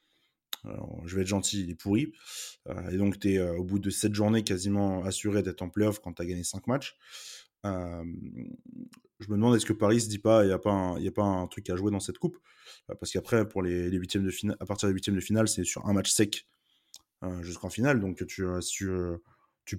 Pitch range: 90-105 Hz